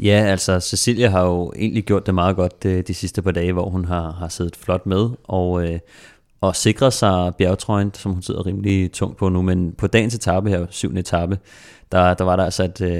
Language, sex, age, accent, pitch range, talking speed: Danish, male, 30-49, native, 90-100 Hz, 215 wpm